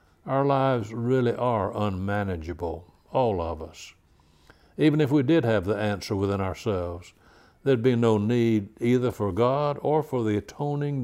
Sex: male